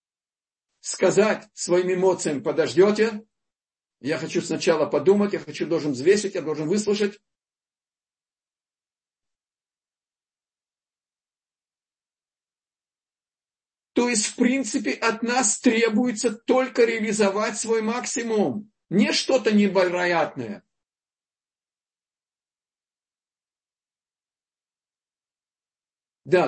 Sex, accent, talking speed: male, native, 70 wpm